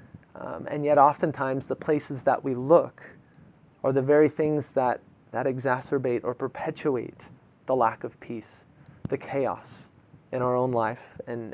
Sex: male